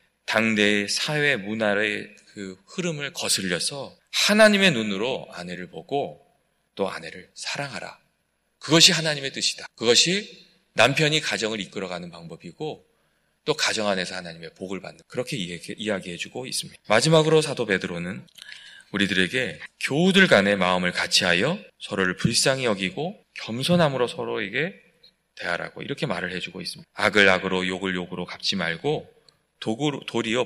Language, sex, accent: Korean, male, native